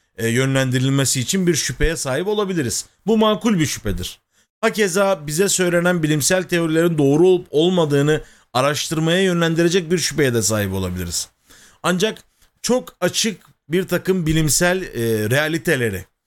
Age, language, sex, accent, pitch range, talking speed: 40-59, Turkish, male, native, 130-185 Hz, 120 wpm